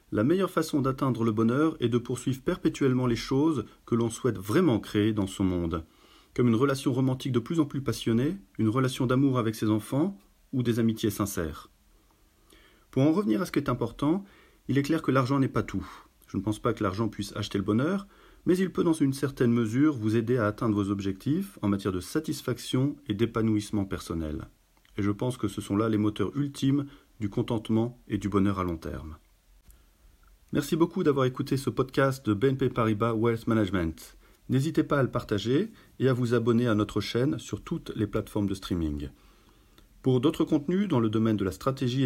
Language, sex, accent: English, male, French